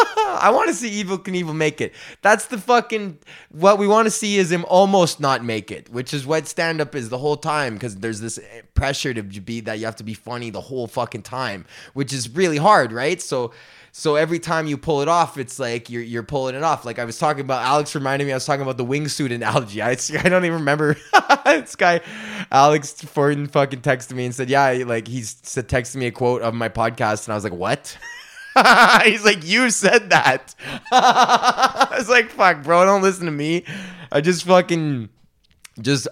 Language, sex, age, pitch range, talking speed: English, male, 20-39, 125-180 Hz, 220 wpm